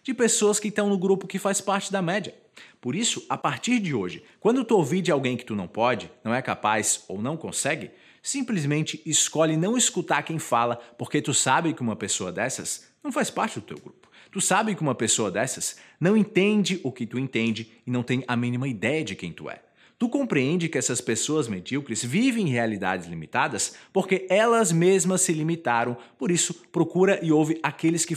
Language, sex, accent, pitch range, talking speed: Portuguese, male, Brazilian, 120-190 Hz, 200 wpm